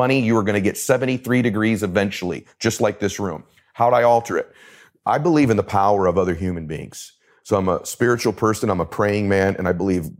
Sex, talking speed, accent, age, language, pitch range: male, 225 wpm, American, 40-59, English, 100-130 Hz